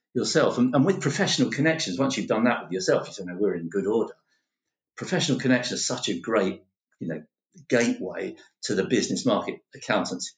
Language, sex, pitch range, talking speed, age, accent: English, male, 95-145 Hz, 190 wpm, 50-69, British